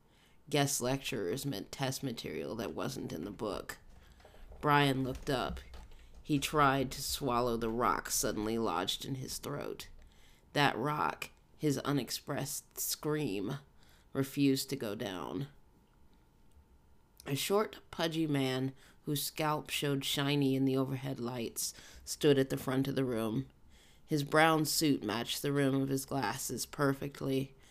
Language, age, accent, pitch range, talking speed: English, 30-49, American, 115-145 Hz, 135 wpm